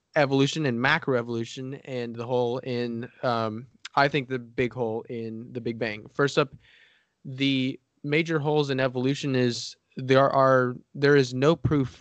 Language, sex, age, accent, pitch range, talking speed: English, male, 20-39, American, 120-145 Hz, 155 wpm